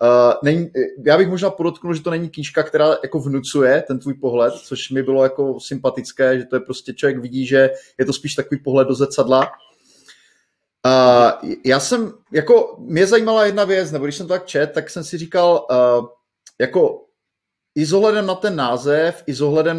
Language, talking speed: Czech, 175 wpm